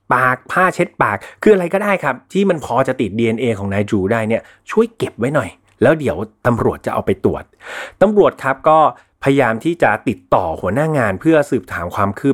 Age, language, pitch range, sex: 30-49, Thai, 110-155 Hz, male